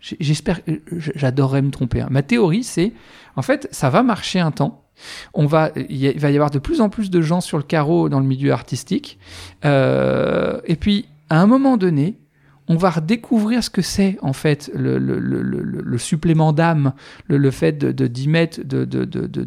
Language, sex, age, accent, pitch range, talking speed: French, male, 40-59, French, 140-190 Hz, 195 wpm